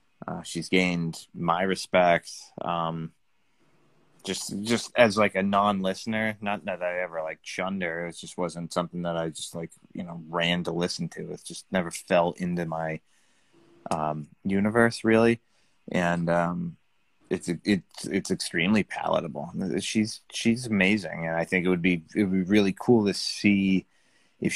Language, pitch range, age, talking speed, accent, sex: English, 85-100 Hz, 30-49, 165 wpm, American, male